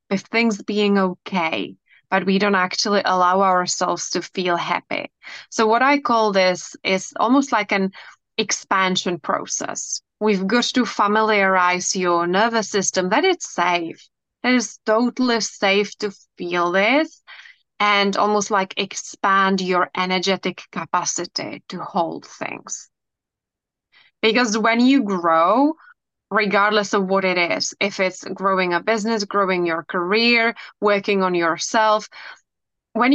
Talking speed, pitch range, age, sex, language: 130 wpm, 185-225 Hz, 20-39, female, English